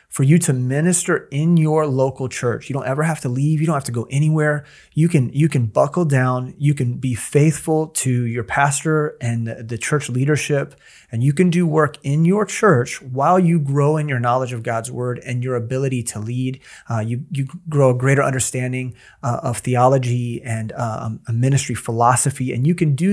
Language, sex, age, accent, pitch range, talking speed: English, male, 30-49, American, 115-145 Hz, 200 wpm